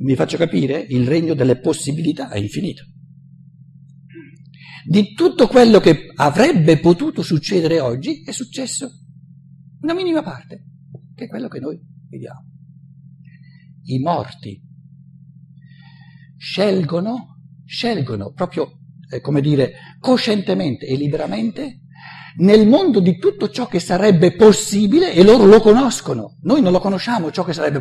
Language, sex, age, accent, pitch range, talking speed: Italian, male, 50-69, native, 150-210 Hz, 125 wpm